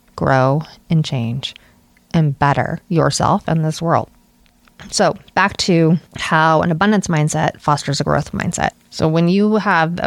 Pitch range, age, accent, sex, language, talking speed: 150-190 Hz, 30-49, American, female, English, 150 wpm